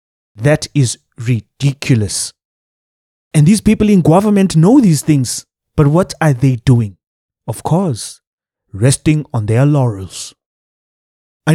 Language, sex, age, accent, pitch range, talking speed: English, male, 20-39, South African, 125-165 Hz, 120 wpm